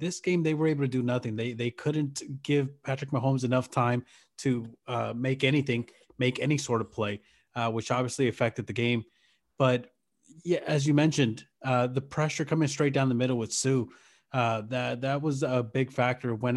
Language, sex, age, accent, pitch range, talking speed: English, male, 30-49, American, 115-135 Hz, 195 wpm